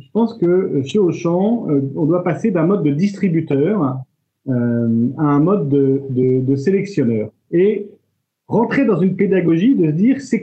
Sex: male